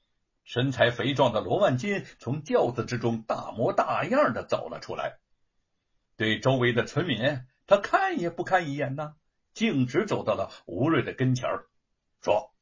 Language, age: Chinese, 60-79